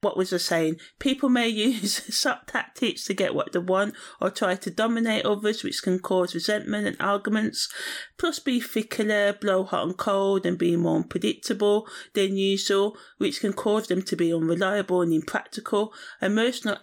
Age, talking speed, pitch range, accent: 30-49, 170 wpm, 185-220 Hz, British